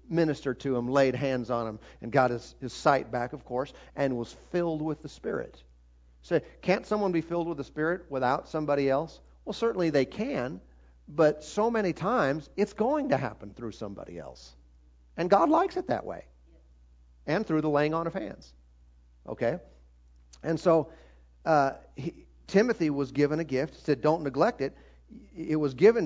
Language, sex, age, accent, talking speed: English, male, 50-69, American, 175 wpm